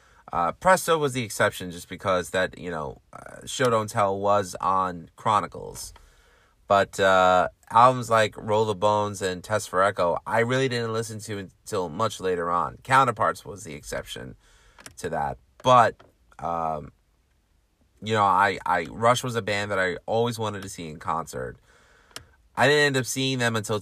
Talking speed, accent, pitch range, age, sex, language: 170 wpm, American, 90-115 Hz, 30-49, male, English